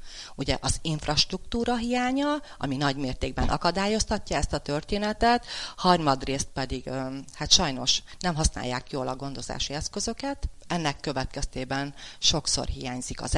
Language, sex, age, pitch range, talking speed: Hungarian, female, 40-59, 125-165 Hz, 115 wpm